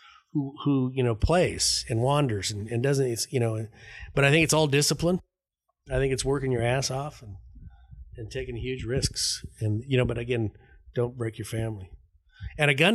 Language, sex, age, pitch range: English, male, 40-59, 105-130 Hz